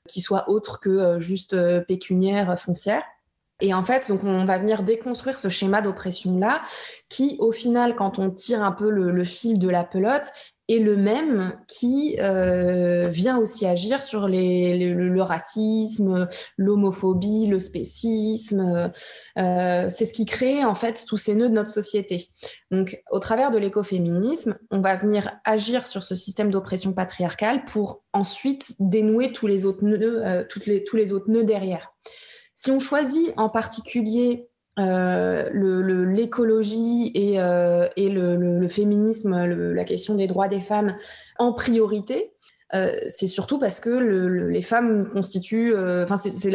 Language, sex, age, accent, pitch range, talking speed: French, female, 20-39, French, 185-225 Hz, 170 wpm